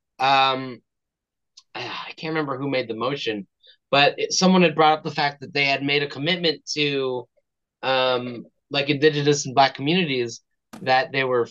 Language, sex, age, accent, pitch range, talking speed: English, male, 30-49, American, 125-170 Hz, 160 wpm